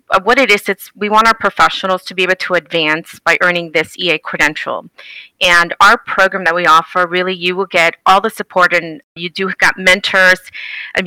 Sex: female